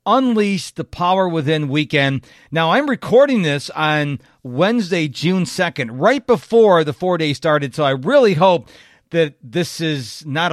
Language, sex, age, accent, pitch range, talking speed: English, male, 50-69, American, 140-200 Hz, 155 wpm